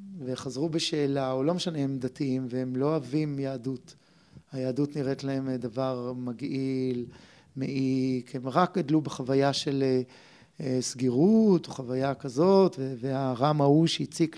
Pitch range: 135-165 Hz